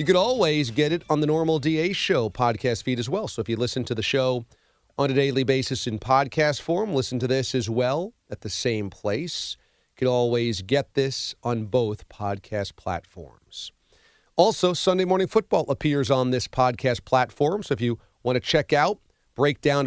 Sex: male